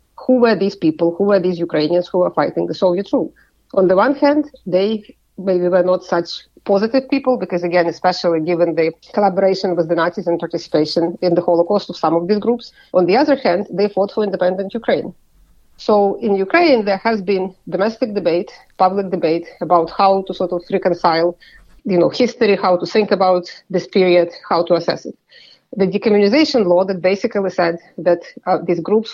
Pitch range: 175-205 Hz